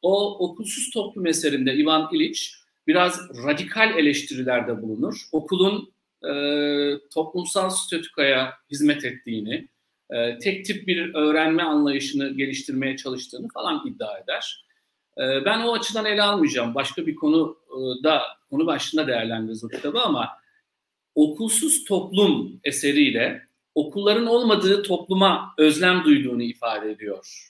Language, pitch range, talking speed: Turkish, 140-225 Hz, 115 wpm